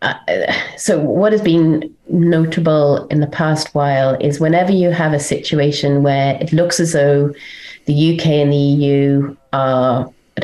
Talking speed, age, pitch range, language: 160 wpm, 30-49, 135-155 Hz, English